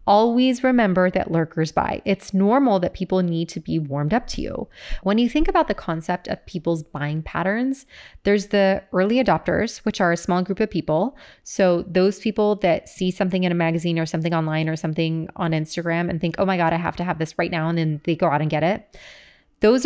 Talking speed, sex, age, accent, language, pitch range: 225 wpm, female, 20-39, American, English, 170-215 Hz